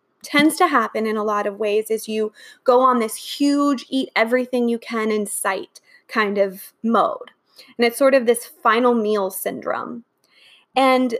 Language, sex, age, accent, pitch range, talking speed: English, female, 20-39, American, 230-300 Hz, 170 wpm